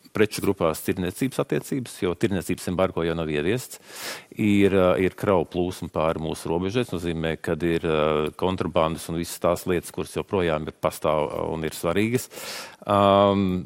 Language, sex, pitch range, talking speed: English, male, 85-120 Hz, 140 wpm